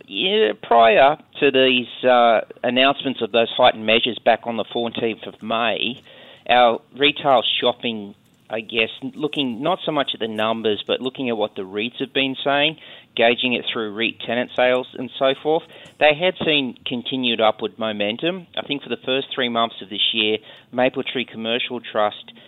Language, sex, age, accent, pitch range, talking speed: English, male, 40-59, Australian, 110-125 Hz, 175 wpm